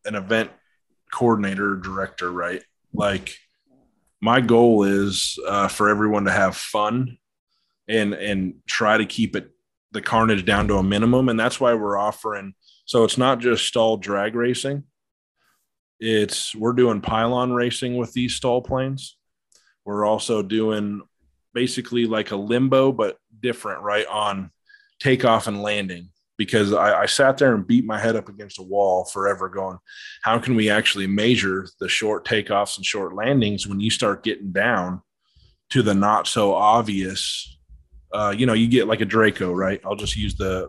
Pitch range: 95-120 Hz